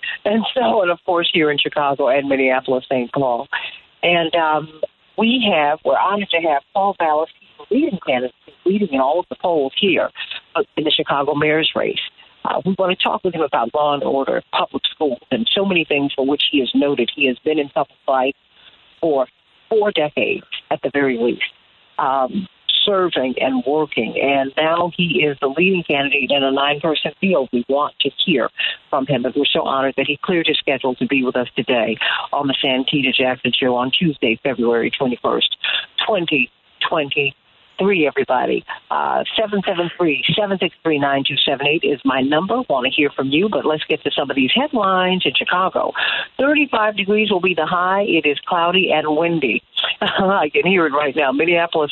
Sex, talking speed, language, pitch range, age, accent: female, 195 wpm, English, 135-185 Hz, 50-69, American